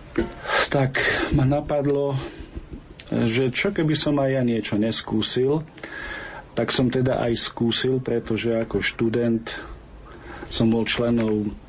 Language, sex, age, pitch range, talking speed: Slovak, male, 50-69, 105-120 Hz, 115 wpm